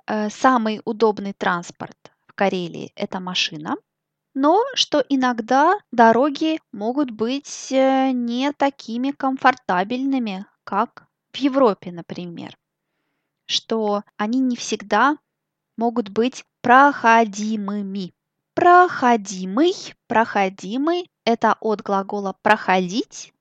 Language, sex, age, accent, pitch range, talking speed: Russian, female, 20-39, native, 210-270 Hz, 90 wpm